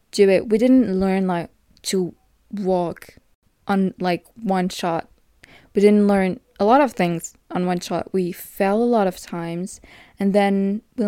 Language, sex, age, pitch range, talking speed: French, female, 20-39, 185-210 Hz, 170 wpm